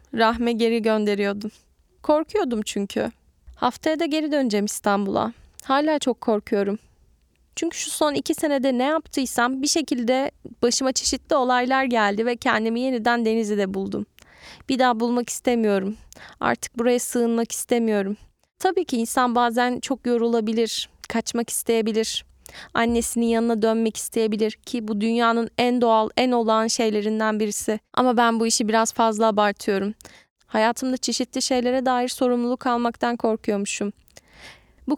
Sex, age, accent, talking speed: female, 10-29, native, 130 wpm